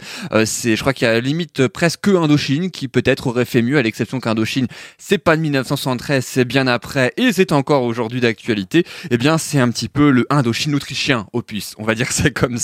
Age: 20-39